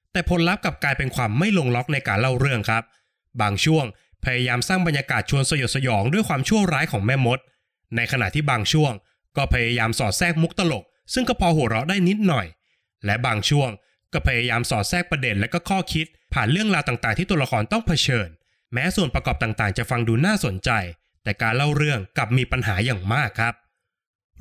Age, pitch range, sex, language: 20-39, 115-165 Hz, male, Thai